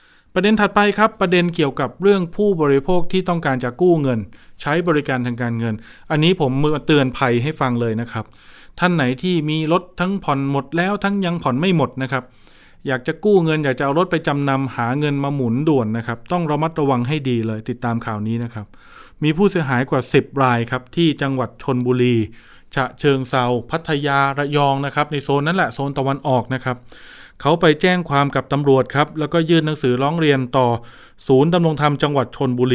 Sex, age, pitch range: male, 20-39, 125-160 Hz